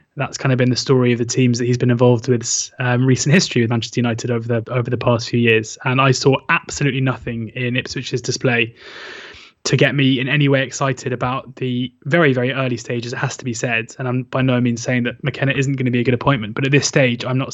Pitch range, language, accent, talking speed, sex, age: 120-135 Hz, English, British, 255 wpm, male, 20-39